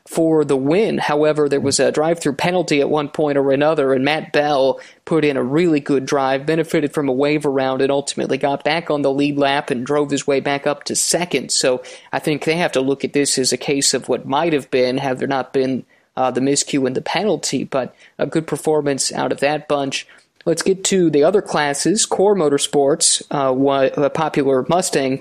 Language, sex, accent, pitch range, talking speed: English, male, American, 135-155 Hz, 215 wpm